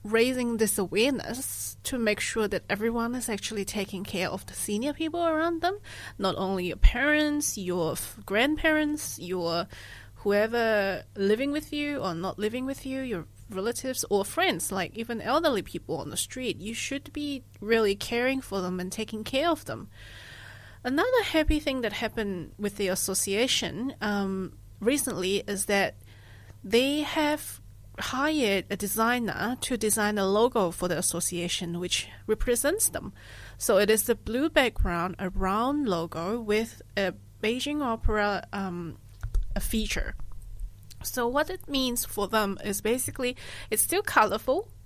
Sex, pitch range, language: female, 185-245 Hz, Chinese